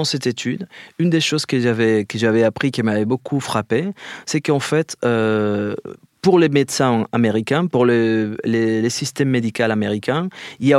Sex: male